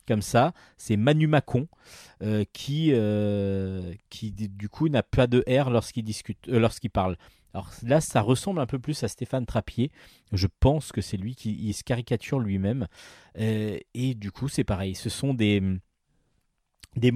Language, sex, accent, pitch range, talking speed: French, male, French, 100-130 Hz, 175 wpm